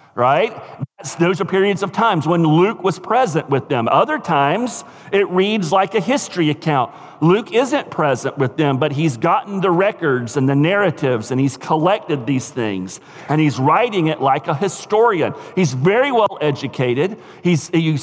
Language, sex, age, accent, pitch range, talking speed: English, male, 50-69, American, 145-195 Hz, 175 wpm